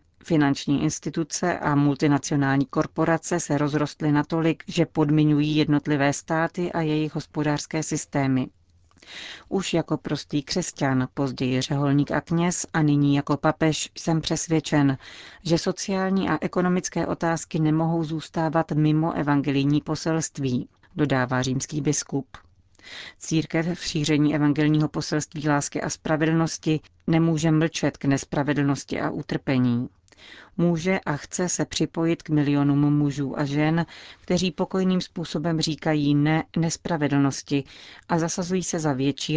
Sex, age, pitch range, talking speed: female, 40-59, 140-165 Hz, 120 wpm